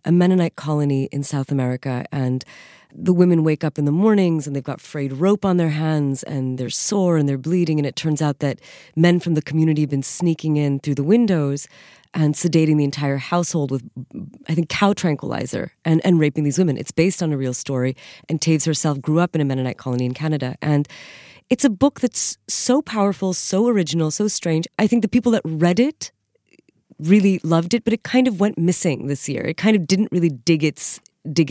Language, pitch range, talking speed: English, 145-185 Hz, 215 wpm